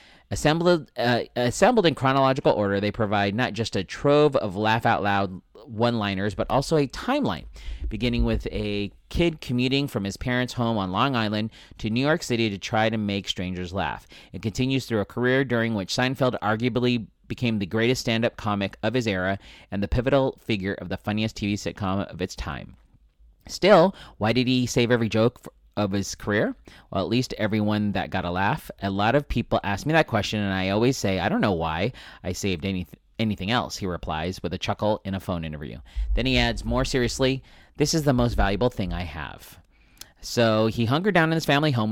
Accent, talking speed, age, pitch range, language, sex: American, 200 wpm, 30-49, 100-125 Hz, English, male